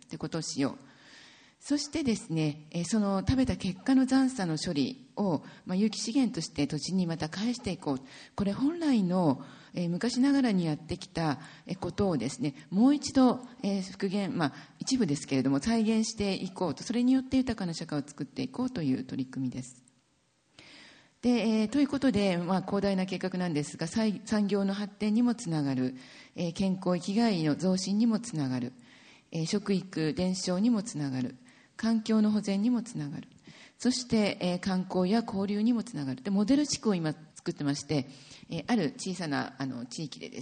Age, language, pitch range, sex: 40-59, Japanese, 155-225 Hz, female